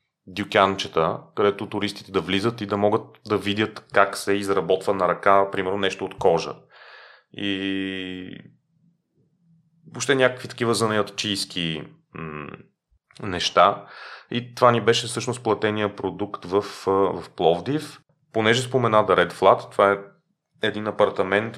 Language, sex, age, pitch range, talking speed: Bulgarian, male, 30-49, 100-120 Hz, 120 wpm